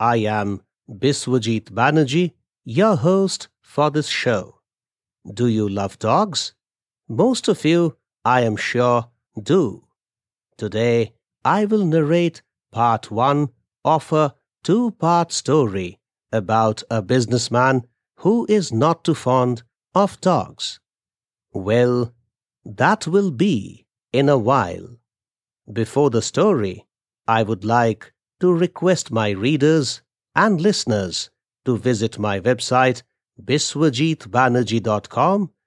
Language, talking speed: English, 110 wpm